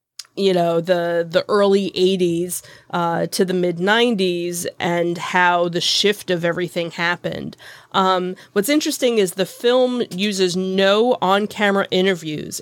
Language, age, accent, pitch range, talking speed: English, 30-49, American, 165-195 Hz, 140 wpm